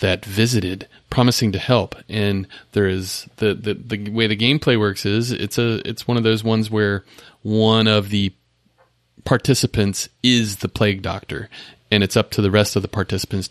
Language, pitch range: English, 95-115 Hz